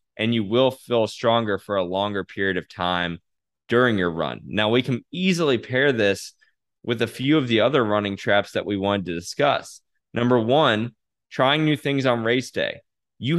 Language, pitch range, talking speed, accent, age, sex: English, 95-120 Hz, 190 wpm, American, 20-39, male